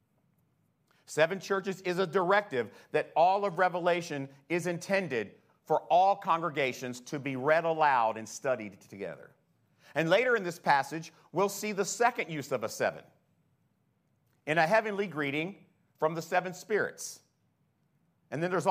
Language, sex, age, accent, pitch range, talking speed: English, male, 50-69, American, 145-190 Hz, 145 wpm